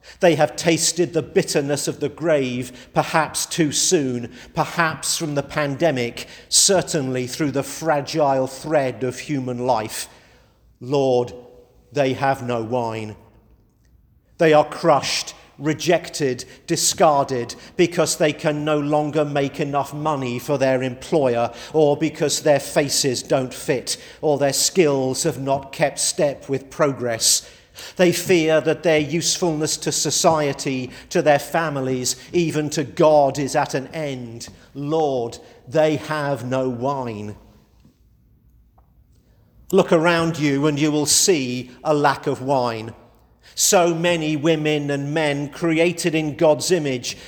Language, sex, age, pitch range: English, male, 50-69, 130-160 Hz